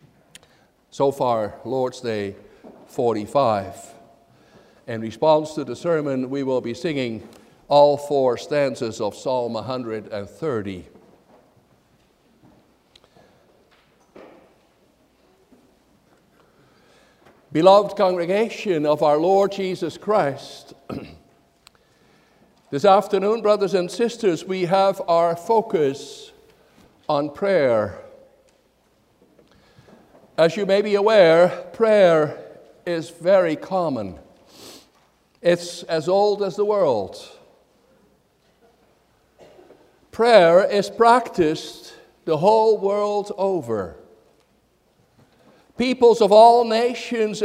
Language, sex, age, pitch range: English, male, 60-79, 140-210 Hz